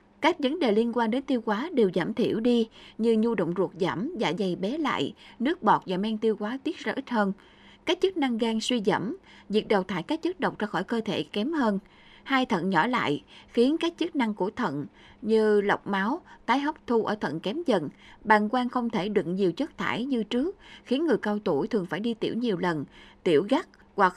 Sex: female